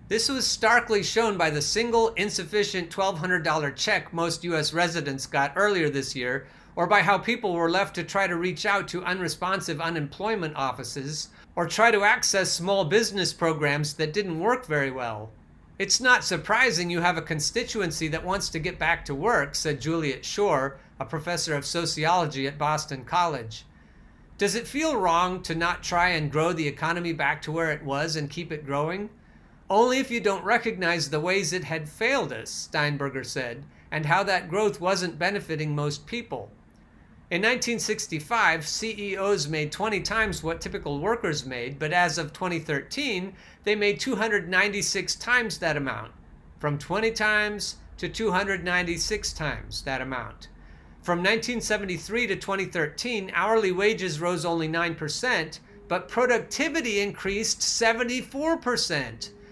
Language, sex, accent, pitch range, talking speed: English, male, American, 150-205 Hz, 150 wpm